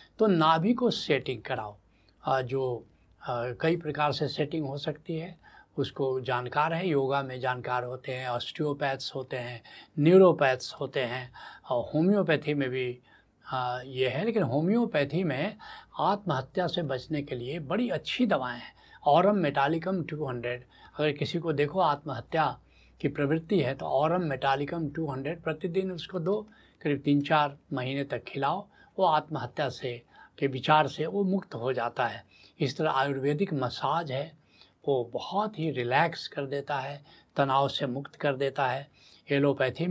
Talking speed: 150 wpm